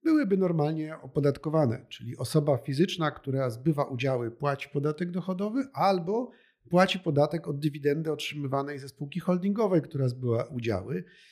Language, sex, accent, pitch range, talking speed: Polish, male, native, 135-185 Hz, 125 wpm